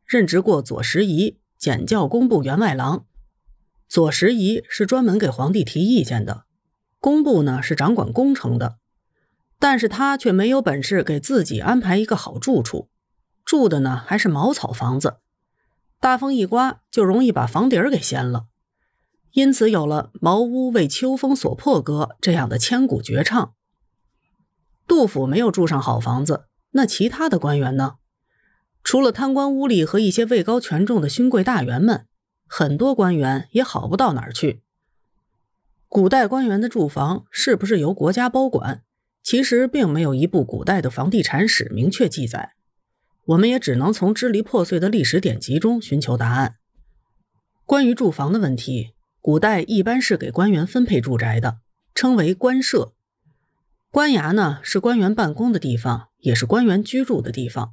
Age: 30-49